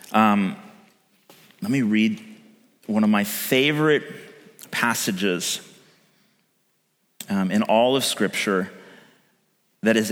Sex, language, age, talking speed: male, English, 30-49, 95 wpm